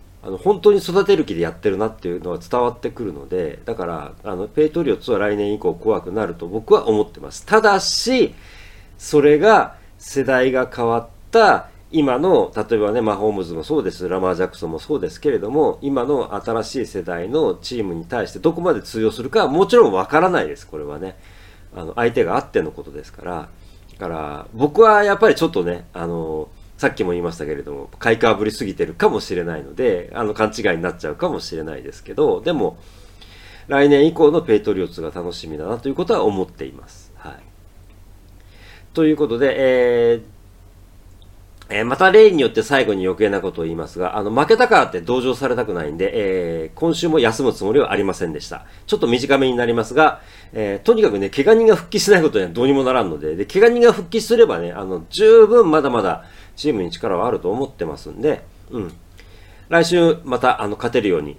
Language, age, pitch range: Japanese, 40-59, 90-145 Hz